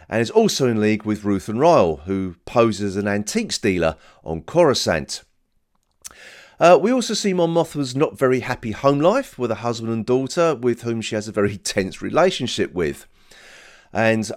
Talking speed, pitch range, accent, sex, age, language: 180 wpm, 100-135 Hz, British, male, 40-59, English